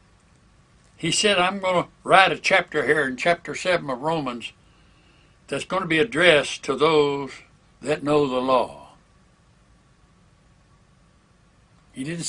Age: 60-79